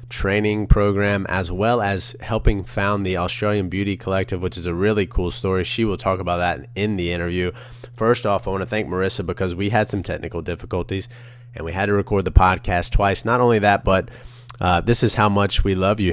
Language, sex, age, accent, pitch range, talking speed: English, male, 30-49, American, 95-115 Hz, 215 wpm